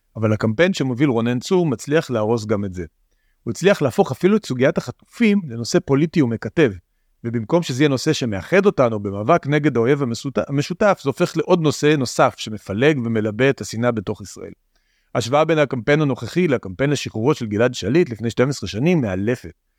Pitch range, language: 115-155 Hz, Hebrew